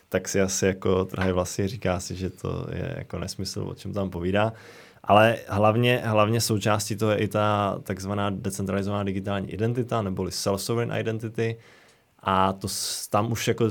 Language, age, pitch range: Czech, 20-39, 95-110 Hz